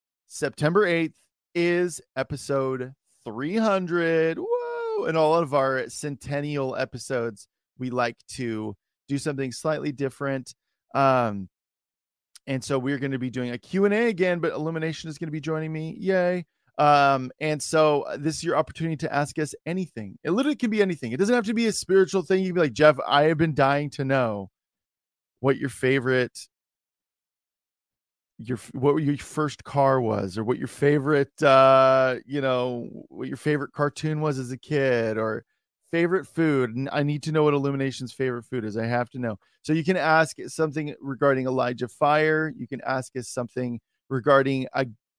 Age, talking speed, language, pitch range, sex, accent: 30-49, 175 wpm, English, 130-160 Hz, male, American